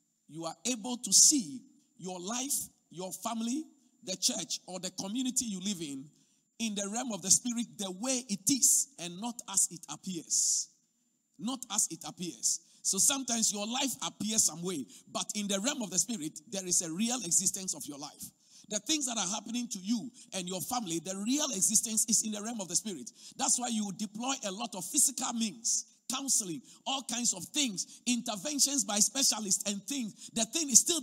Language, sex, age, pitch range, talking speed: English, male, 50-69, 190-245 Hz, 195 wpm